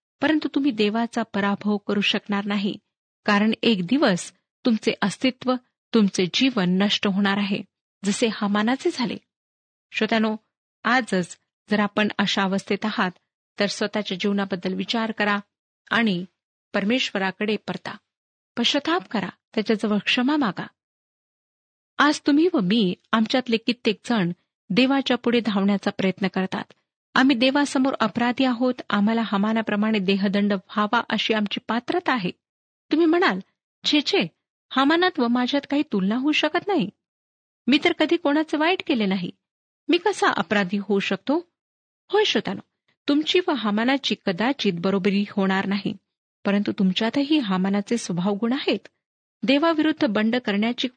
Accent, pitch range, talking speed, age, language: native, 200-265 Hz, 120 wpm, 40-59, Marathi